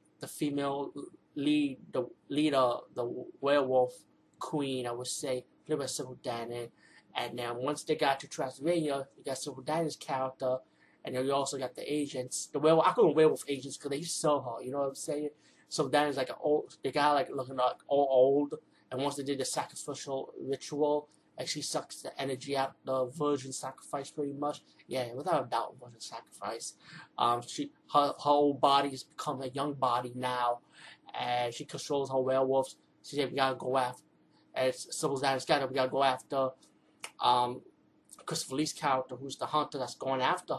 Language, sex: English, male